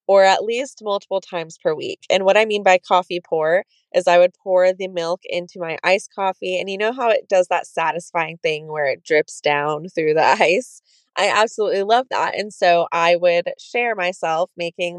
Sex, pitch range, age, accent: female, 175-225 Hz, 20-39, American